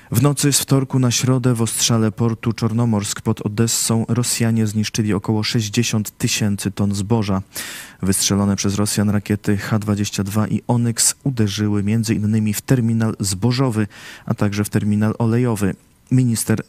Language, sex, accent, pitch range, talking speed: Polish, male, native, 100-115 Hz, 135 wpm